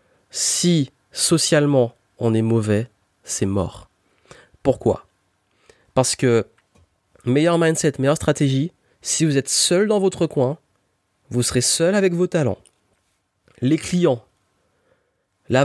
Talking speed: 115 wpm